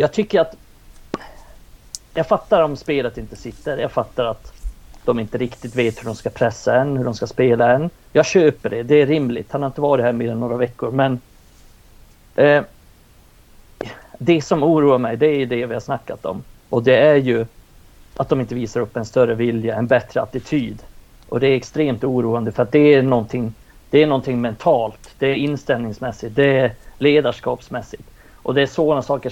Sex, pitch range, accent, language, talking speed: male, 120-140 Hz, native, Swedish, 190 wpm